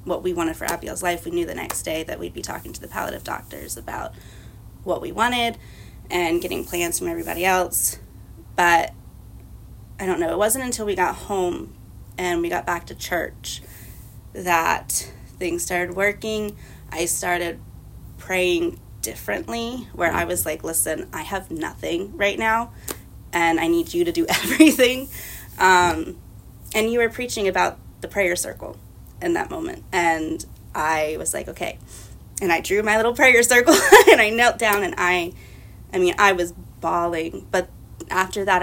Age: 20-39